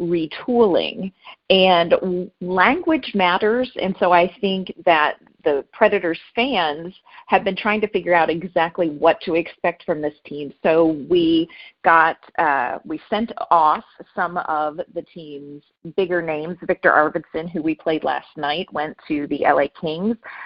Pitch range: 160-200 Hz